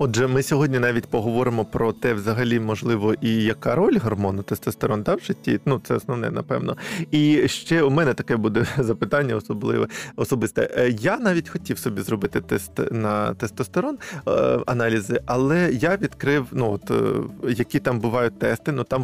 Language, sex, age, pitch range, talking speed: Ukrainian, male, 20-39, 120-155 Hz, 160 wpm